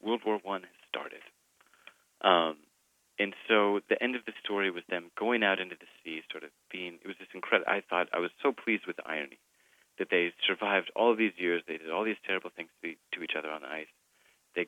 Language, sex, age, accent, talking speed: English, male, 30-49, American, 220 wpm